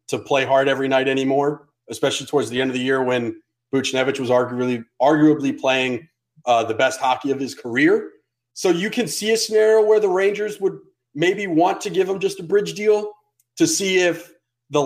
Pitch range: 130-185 Hz